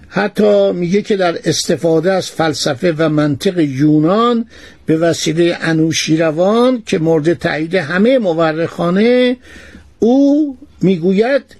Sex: male